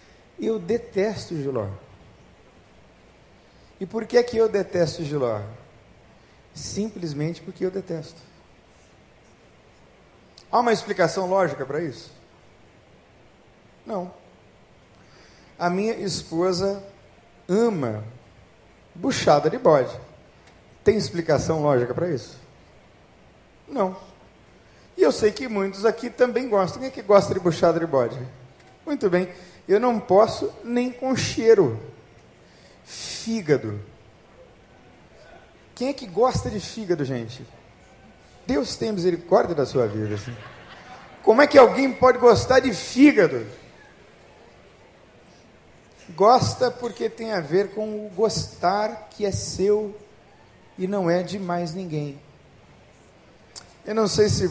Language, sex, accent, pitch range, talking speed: Portuguese, male, Brazilian, 135-215 Hz, 110 wpm